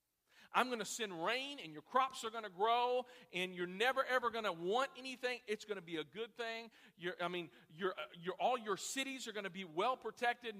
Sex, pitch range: male, 195-250 Hz